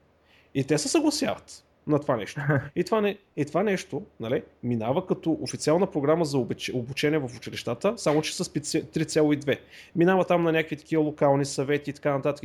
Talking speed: 180 wpm